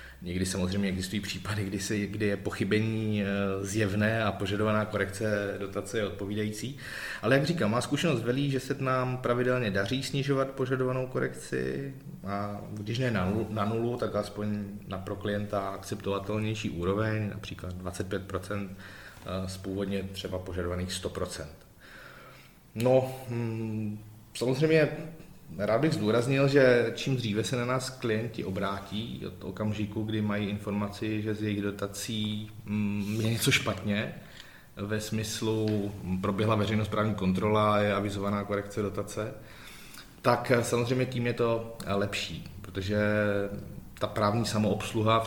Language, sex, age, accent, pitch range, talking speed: Czech, male, 30-49, native, 100-115 Hz, 125 wpm